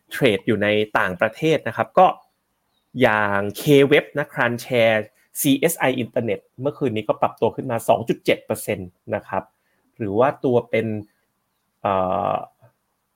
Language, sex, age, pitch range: Thai, male, 30-49, 105-140 Hz